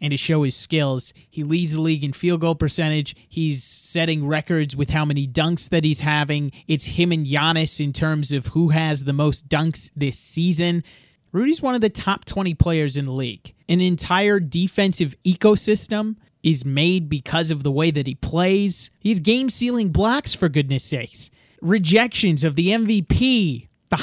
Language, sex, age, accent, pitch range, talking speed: English, male, 30-49, American, 140-210 Hz, 175 wpm